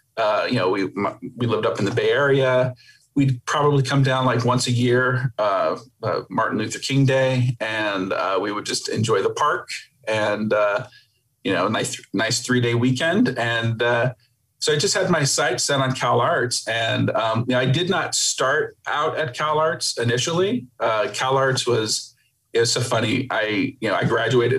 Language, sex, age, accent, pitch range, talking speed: English, male, 40-59, American, 120-140 Hz, 190 wpm